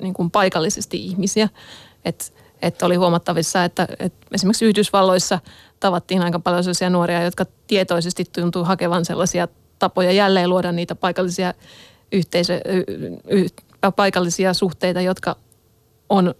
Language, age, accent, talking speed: Finnish, 20-39, native, 125 wpm